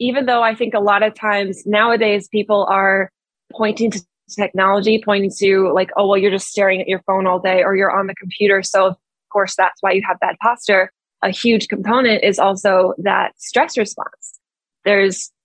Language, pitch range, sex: English, 190-220 Hz, female